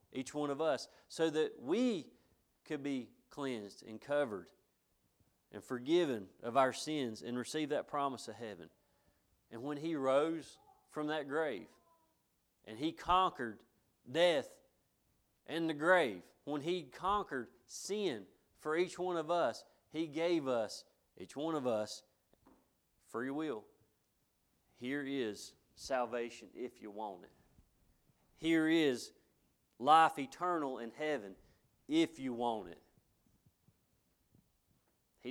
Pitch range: 120-165 Hz